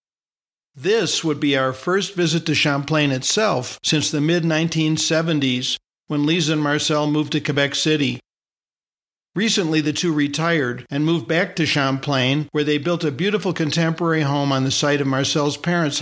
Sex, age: male, 50-69